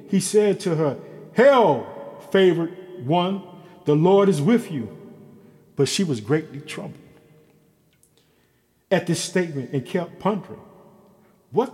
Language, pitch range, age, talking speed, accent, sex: English, 145-210 Hz, 50-69, 125 wpm, American, male